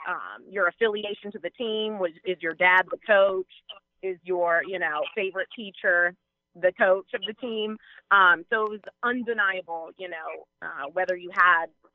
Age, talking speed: 30-49, 170 wpm